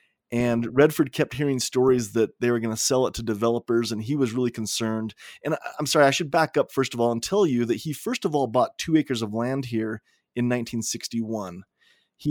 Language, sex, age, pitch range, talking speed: English, male, 30-49, 115-140 Hz, 225 wpm